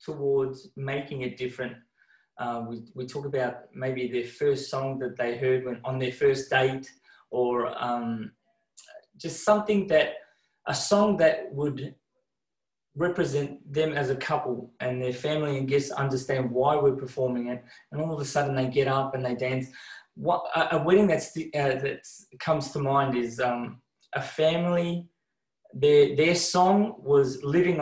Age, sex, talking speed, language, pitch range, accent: 20-39, male, 165 wpm, English, 130-160 Hz, Australian